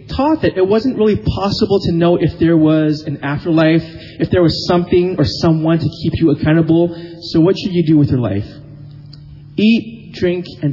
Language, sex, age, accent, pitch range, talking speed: English, male, 30-49, American, 140-180 Hz, 190 wpm